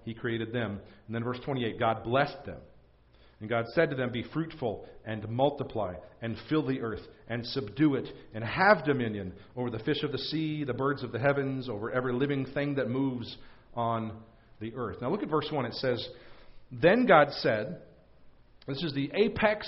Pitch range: 120-155 Hz